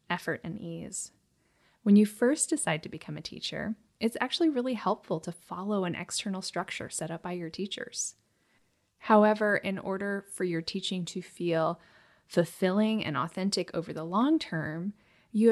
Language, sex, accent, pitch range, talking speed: English, female, American, 180-220 Hz, 160 wpm